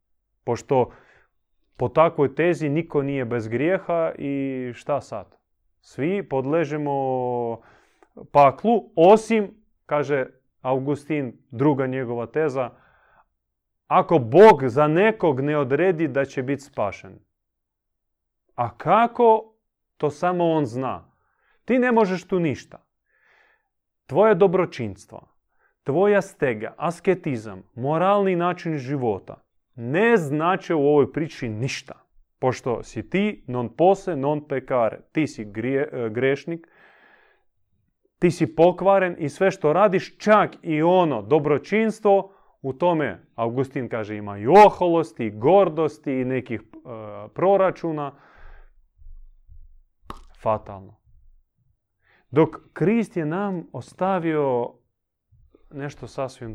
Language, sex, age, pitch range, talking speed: Croatian, male, 30-49, 120-180 Hz, 105 wpm